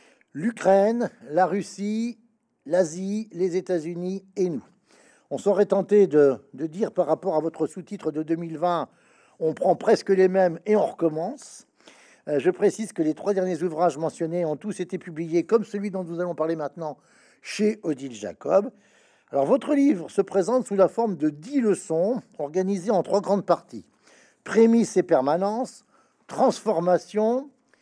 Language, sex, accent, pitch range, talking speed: French, male, French, 170-220 Hz, 155 wpm